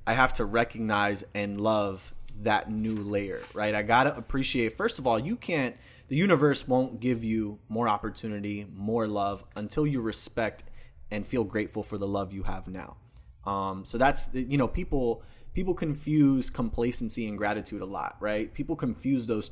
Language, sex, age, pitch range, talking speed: English, male, 20-39, 105-130 Hz, 170 wpm